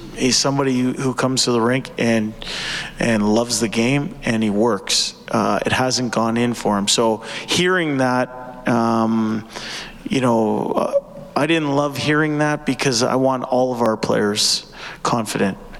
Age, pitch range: 30-49, 110-125 Hz